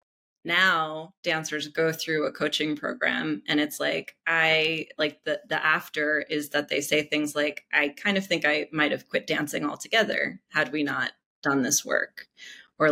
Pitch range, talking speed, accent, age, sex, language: 150-175 Hz, 175 wpm, American, 20-39, female, English